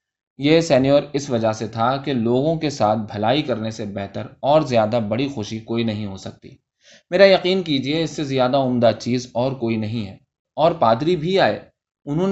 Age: 20-39